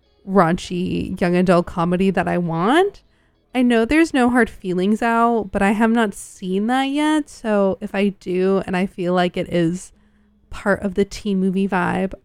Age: 20-39